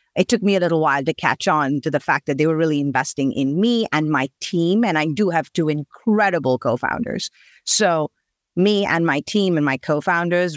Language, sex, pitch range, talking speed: English, female, 150-195 Hz, 210 wpm